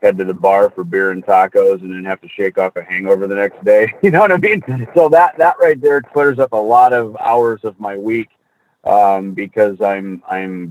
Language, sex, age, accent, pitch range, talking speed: English, male, 40-59, American, 100-125 Hz, 235 wpm